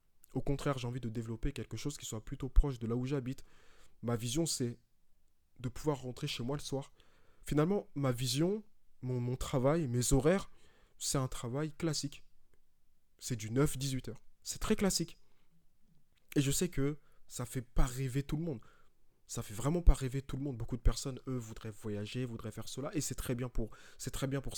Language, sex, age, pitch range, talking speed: French, male, 20-39, 115-145 Hz, 195 wpm